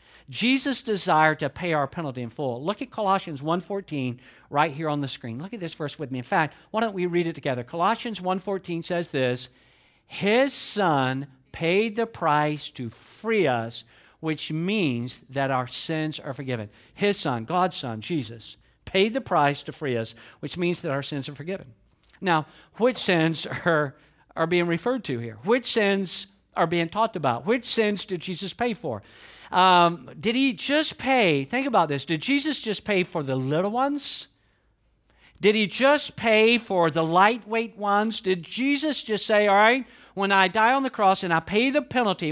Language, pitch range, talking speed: English, 150-220 Hz, 185 wpm